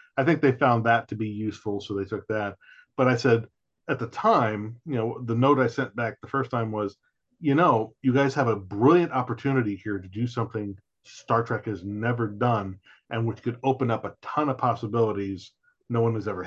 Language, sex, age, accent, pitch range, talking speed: English, male, 40-59, American, 110-140 Hz, 215 wpm